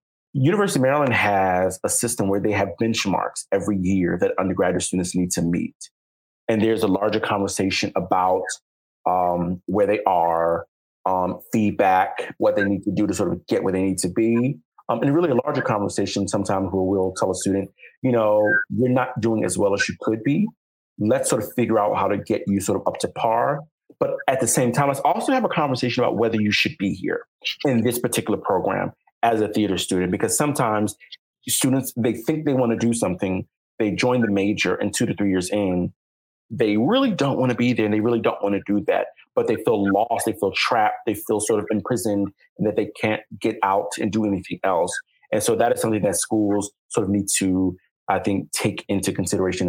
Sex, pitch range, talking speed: male, 95-125 Hz, 215 wpm